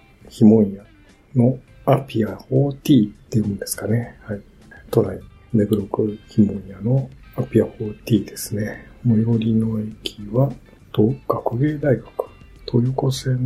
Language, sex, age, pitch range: Japanese, male, 60-79, 105-125 Hz